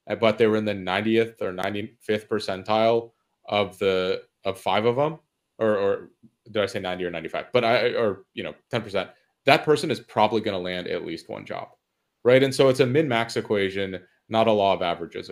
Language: English